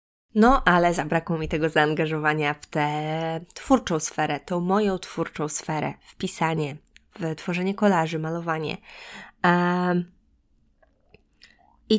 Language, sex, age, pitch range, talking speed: Polish, female, 20-39, 160-190 Hz, 105 wpm